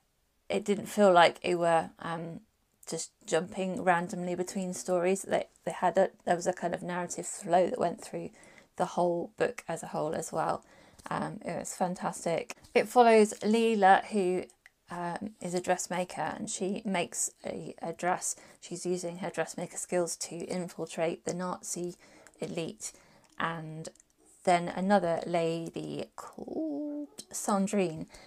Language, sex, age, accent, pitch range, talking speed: English, female, 20-39, British, 175-210 Hz, 145 wpm